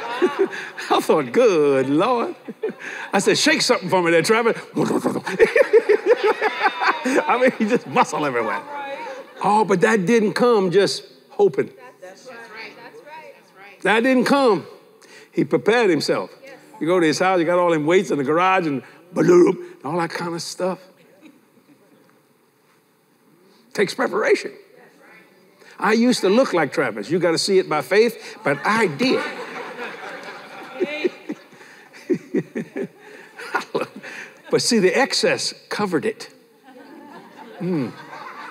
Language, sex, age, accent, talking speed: English, male, 60-79, American, 120 wpm